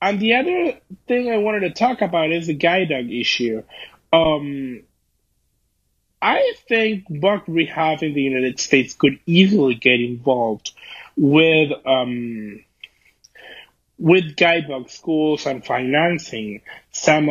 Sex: male